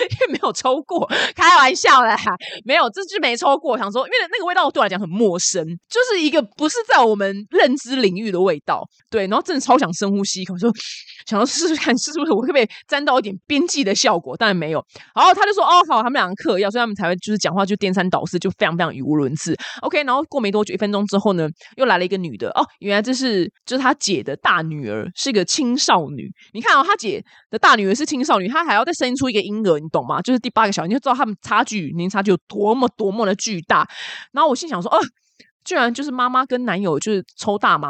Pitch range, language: 185-260 Hz, Chinese